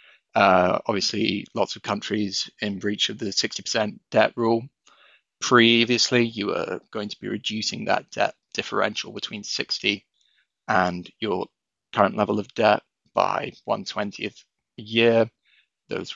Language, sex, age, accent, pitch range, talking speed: English, male, 20-39, British, 100-115 Hz, 130 wpm